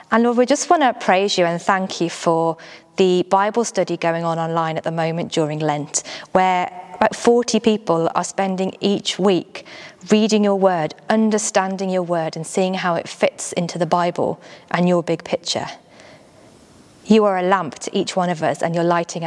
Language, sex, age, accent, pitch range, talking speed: English, female, 20-39, British, 165-205 Hz, 190 wpm